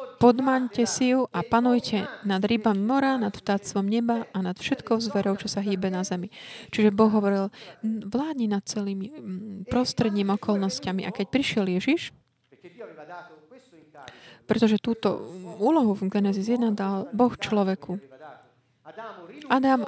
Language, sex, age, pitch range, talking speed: Slovak, female, 20-39, 190-225 Hz, 125 wpm